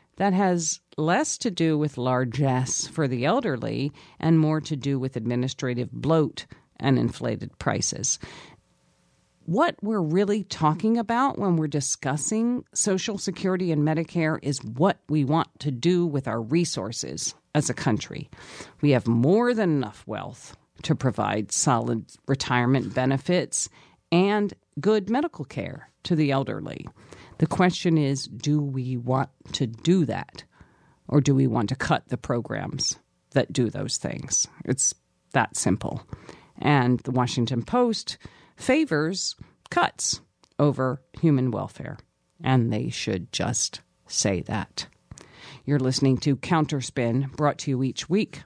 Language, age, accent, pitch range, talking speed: English, 50-69, American, 130-170 Hz, 135 wpm